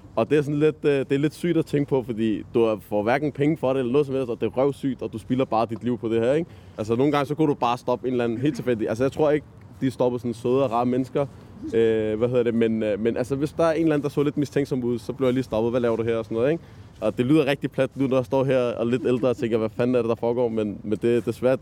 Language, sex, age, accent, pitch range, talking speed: Danish, male, 20-39, native, 120-150 Hz, 330 wpm